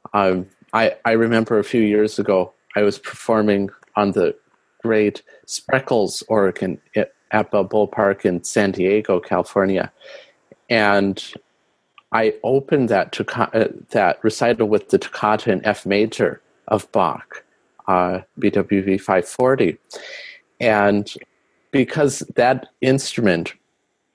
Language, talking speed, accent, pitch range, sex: English, 115 wpm, American, 100-125 Hz, male